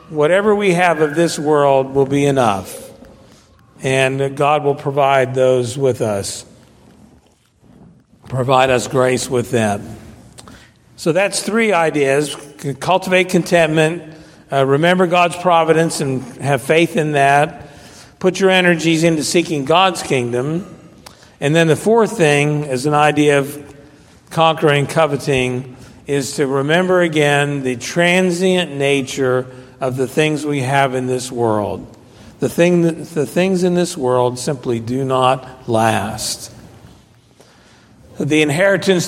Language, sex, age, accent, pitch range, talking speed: English, male, 50-69, American, 130-170 Hz, 125 wpm